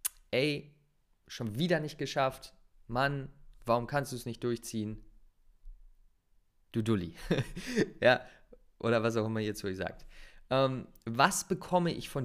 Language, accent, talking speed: German, German, 135 wpm